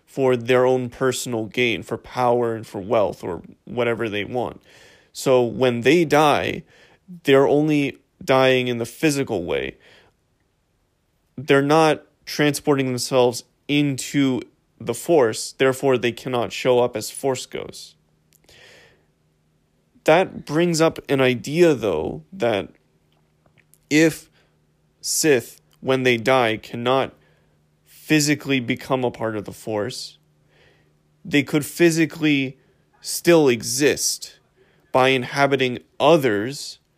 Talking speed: 110 wpm